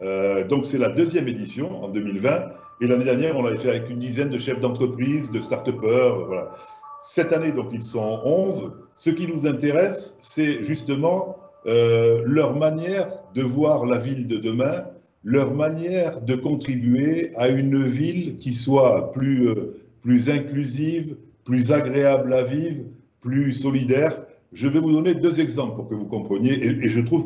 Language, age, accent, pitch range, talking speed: French, 60-79, French, 120-160 Hz, 170 wpm